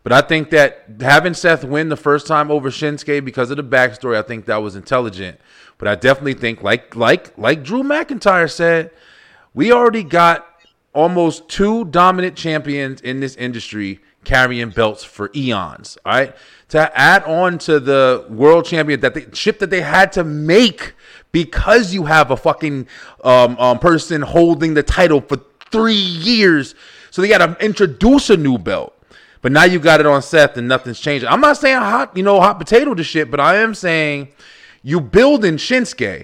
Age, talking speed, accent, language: 30-49, 185 wpm, American, English